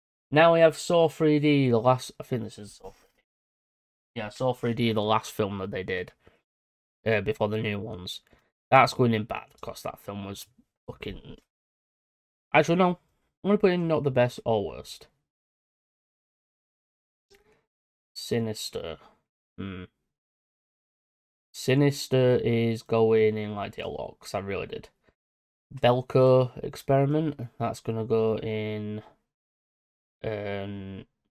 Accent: British